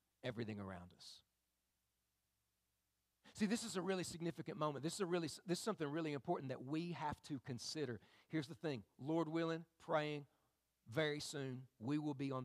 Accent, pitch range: American, 110-180 Hz